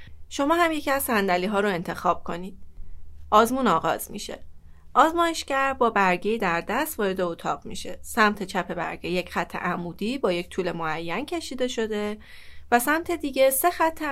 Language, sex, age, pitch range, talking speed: Persian, female, 30-49, 180-245 Hz, 155 wpm